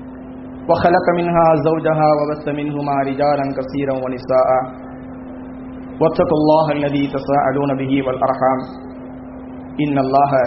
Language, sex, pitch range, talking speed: English, male, 130-165 Hz, 105 wpm